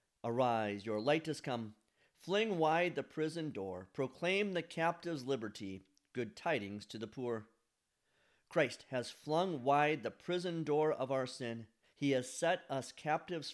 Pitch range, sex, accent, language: 110-150 Hz, male, American, English